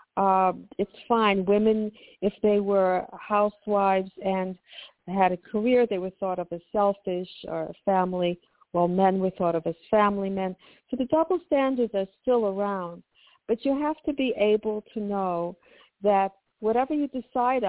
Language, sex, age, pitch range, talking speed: English, female, 60-79, 190-255 Hz, 165 wpm